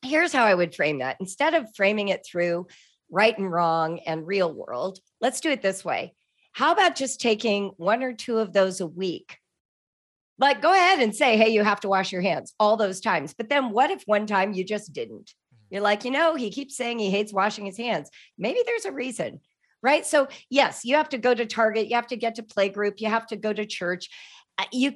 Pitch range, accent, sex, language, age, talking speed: 195-275 Hz, American, female, English, 40-59, 230 wpm